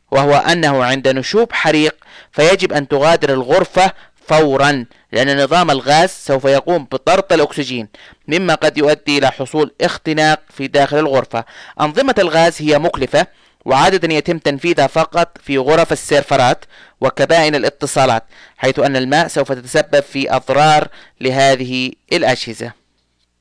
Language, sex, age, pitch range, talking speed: Arabic, male, 30-49, 130-155 Hz, 125 wpm